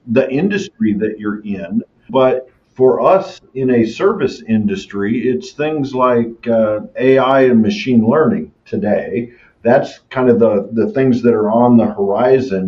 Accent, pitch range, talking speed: American, 115-135 Hz, 150 wpm